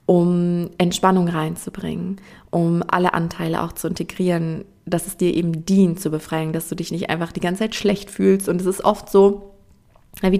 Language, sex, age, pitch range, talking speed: German, female, 20-39, 170-195 Hz, 185 wpm